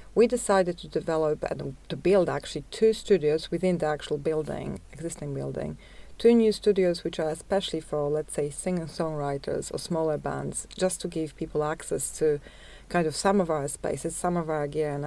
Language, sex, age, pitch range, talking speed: English, female, 40-59, 150-180 Hz, 185 wpm